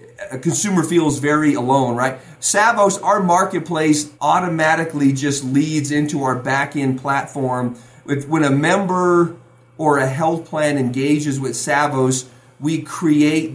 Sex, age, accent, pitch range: male, 40-59, American, 140-180 Hz